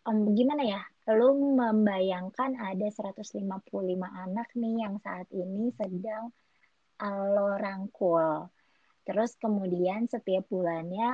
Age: 20-39